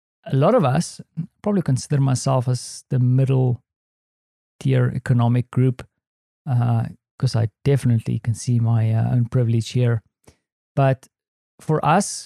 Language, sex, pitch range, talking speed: English, male, 120-145 Hz, 125 wpm